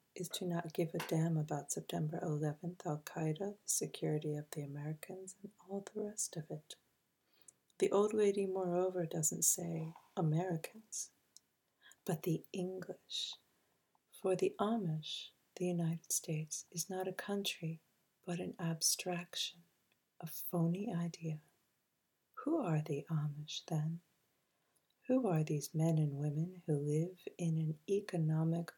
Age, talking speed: 40-59, 130 wpm